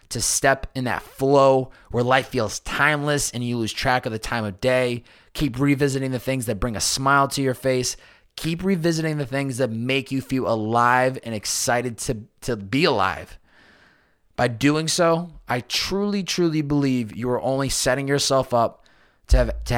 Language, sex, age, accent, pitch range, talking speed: English, male, 20-39, American, 120-145 Hz, 180 wpm